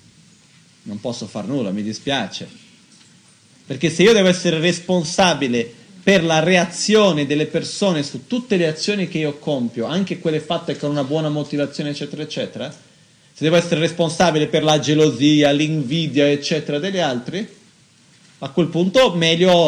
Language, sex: Italian, male